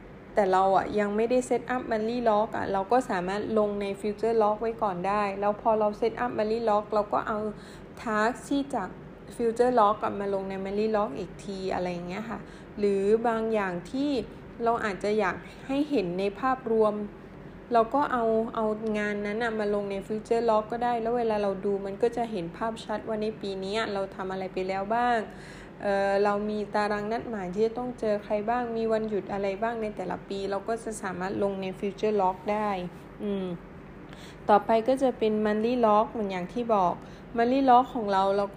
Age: 20-39